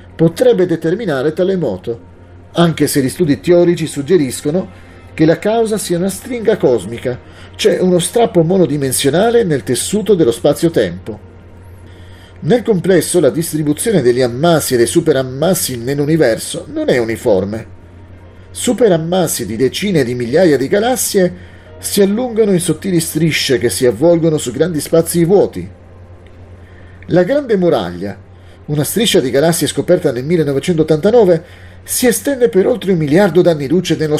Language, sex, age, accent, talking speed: Italian, male, 40-59, native, 135 wpm